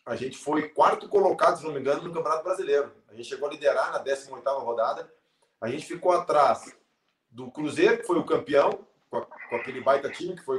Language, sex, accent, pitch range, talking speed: Portuguese, male, Brazilian, 120-185 Hz, 205 wpm